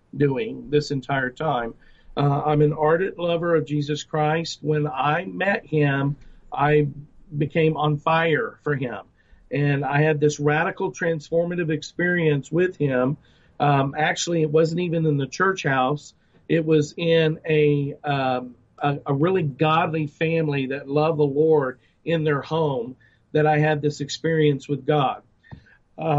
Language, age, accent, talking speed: English, 40-59, American, 150 wpm